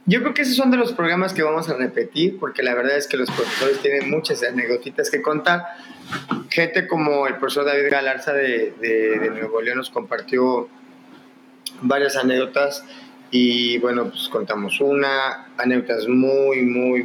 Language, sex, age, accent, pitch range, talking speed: Spanish, male, 30-49, Mexican, 135-200 Hz, 165 wpm